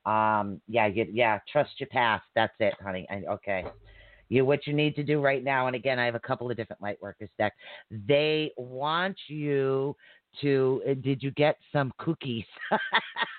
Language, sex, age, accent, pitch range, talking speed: English, female, 40-59, American, 120-160 Hz, 185 wpm